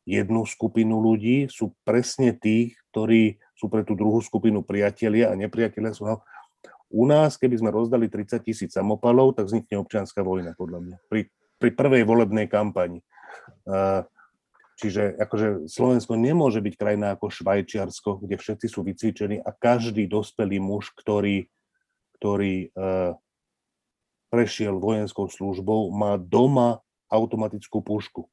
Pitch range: 105-120 Hz